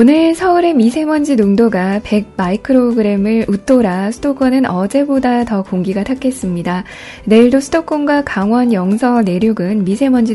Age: 20-39